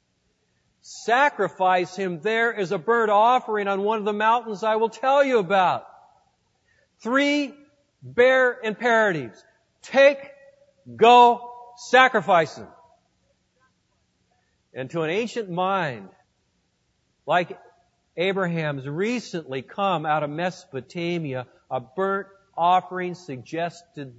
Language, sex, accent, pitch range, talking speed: English, male, American, 135-220 Hz, 100 wpm